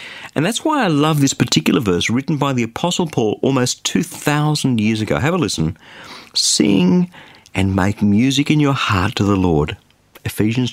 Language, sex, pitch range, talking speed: English, male, 110-160 Hz, 175 wpm